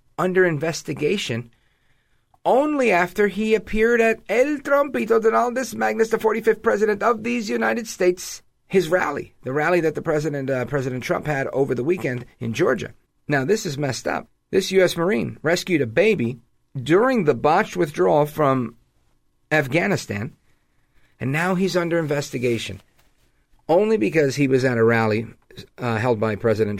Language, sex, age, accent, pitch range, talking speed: English, male, 40-59, American, 120-175 Hz, 150 wpm